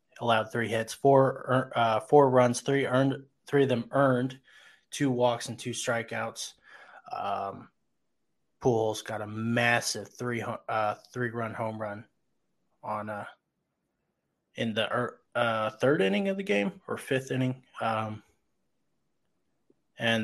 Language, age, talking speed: English, 20-39, 130 wpm